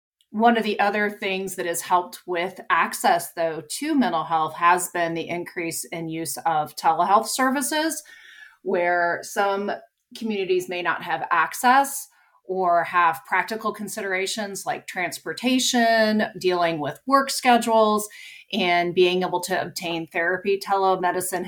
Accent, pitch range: American, 165-215 Hz